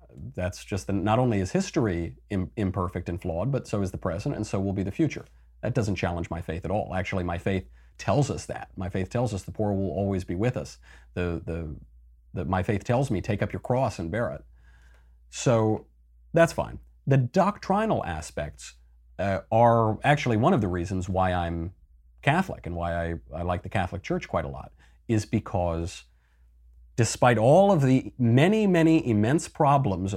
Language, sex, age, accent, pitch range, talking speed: English, male, 40-59, American, 85-110 Hz, 195 wpm